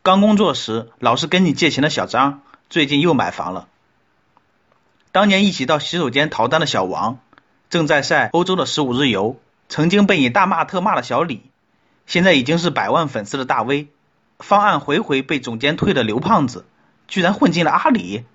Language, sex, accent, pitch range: Chinese, male, native, 130-190 Hz